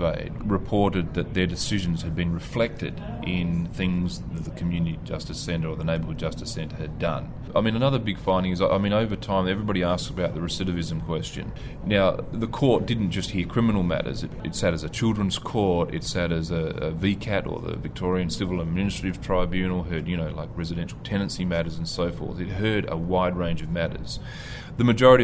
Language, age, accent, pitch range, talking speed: English, 30-49, Australian, 85-100 Hz, 195 wpm